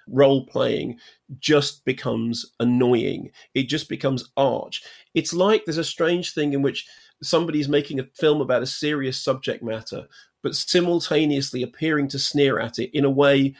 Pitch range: 130-165 Hz